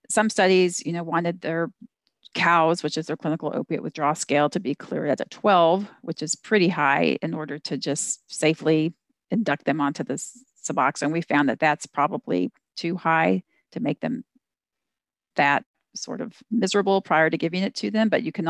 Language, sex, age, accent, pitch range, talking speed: English, female, 40-59, American, 150-190 Hz, 185 wpm